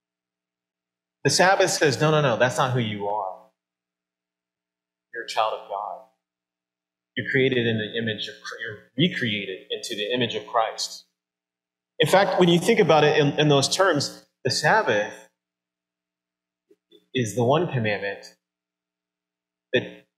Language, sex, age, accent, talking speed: English, male, 30-49, American, 140 wpm